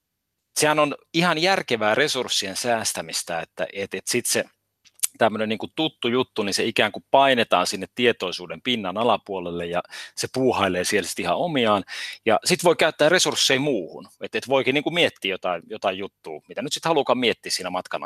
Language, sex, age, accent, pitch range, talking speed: Finnish, male, 30-49, native, 105-165 Hz, 175 wpm